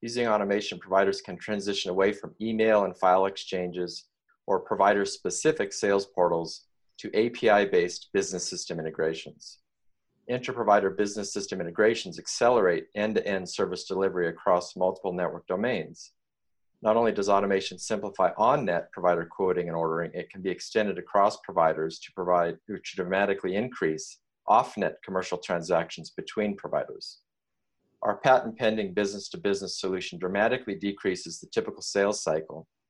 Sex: male